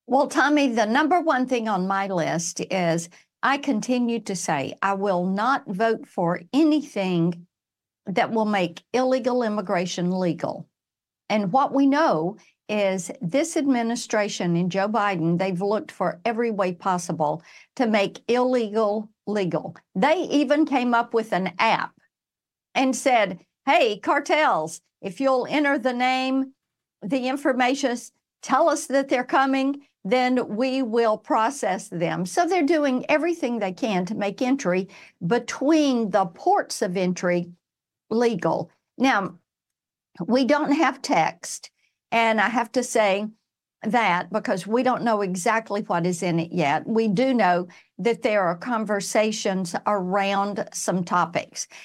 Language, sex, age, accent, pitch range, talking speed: English, female, 50-69, American, 190-260 Hz, 140 wpm